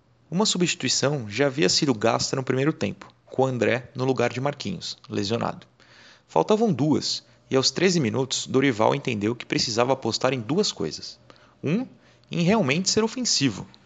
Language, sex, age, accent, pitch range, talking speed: Portuguese, male, 30-49, Brazilian, 115-150 Hz, 150 wpm